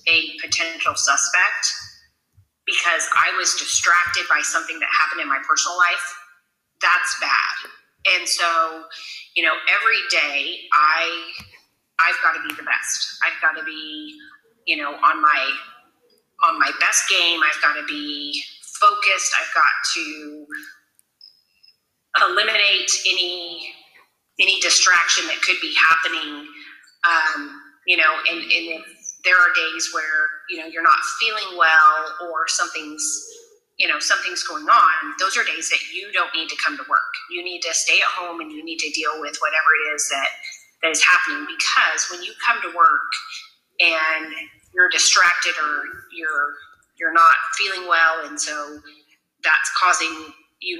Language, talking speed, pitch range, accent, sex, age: English, 155 wpm, 155-180 Hz, American, female, 30-49